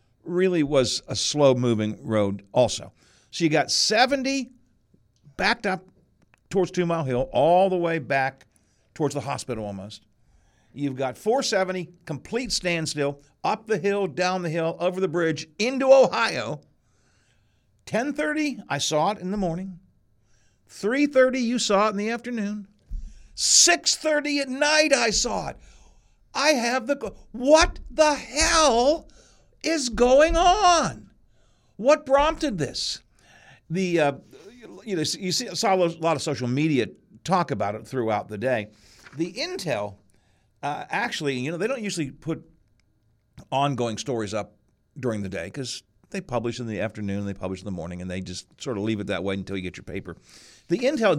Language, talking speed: English, 160 wpm